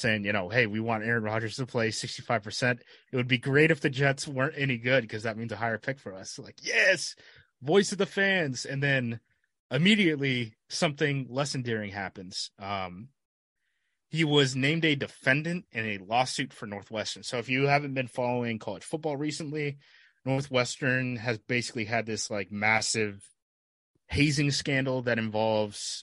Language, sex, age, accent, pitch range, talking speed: English, male, 20-39, American, 110-130 Hz, 170 wpm